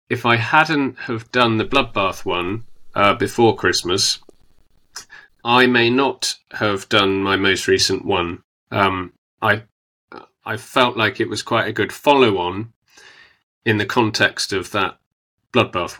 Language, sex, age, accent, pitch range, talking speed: English, male, 30-49, British, 95-120 Hz, 145 wpm